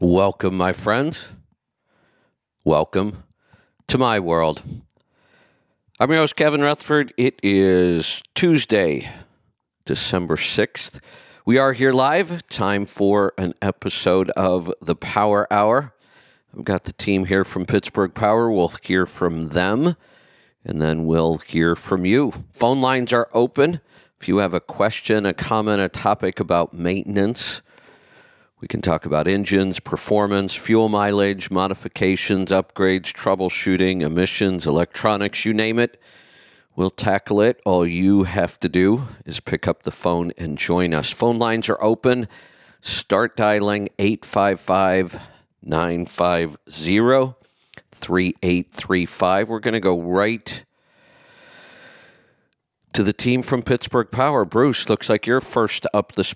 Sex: male